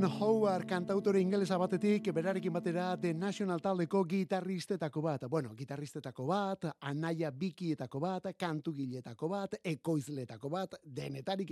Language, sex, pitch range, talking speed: Spanish, male, 140-190 Hz, 135 wpm